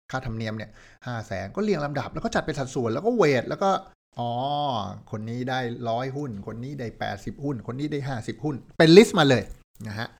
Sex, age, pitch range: male, 60-79, 110-155 Hz